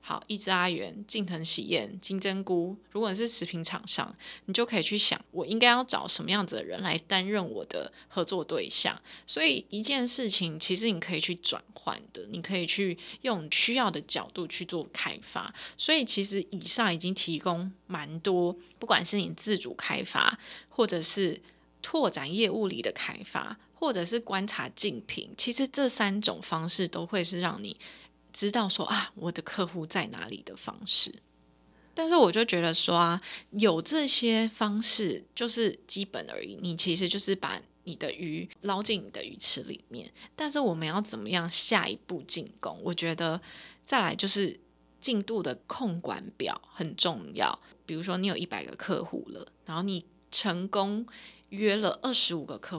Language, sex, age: Chinese, female, 20-39